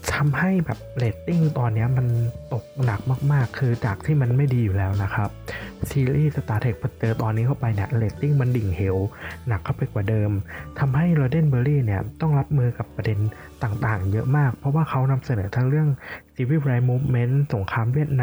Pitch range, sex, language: 105-135 Hz, male, Thai